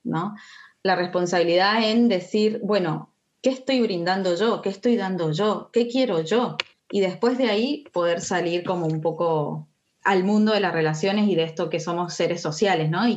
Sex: female